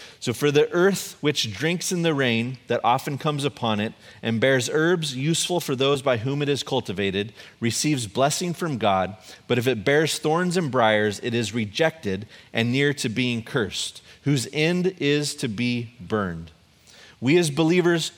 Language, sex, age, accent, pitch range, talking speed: English, male, 30-49, American, 115-155 Hz, 175 wpm